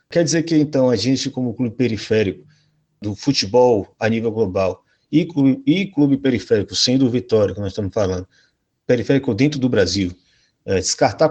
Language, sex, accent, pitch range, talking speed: Portuguese, male, Brazilian, 105-135 Hz, 170 wpm